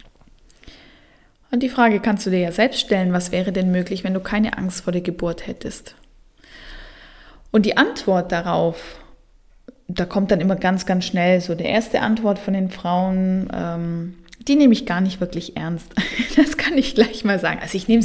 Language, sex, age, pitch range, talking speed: German, female, 20-39, 180-215 Hz, 185 wpm